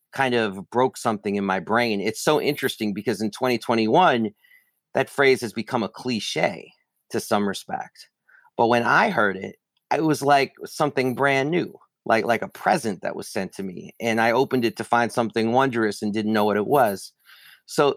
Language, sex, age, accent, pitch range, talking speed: English, male, 40-59, American, 105-130 Hz, 190 wpm